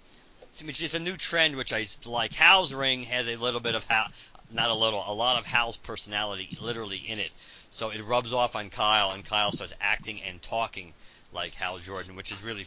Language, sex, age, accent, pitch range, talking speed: English, male, 50-69, American, 115-165 Hz, 215 wpm